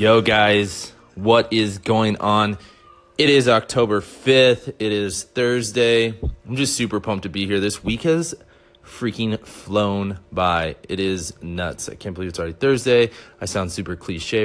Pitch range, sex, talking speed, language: 95-115 Hz, male, 160 wpm, English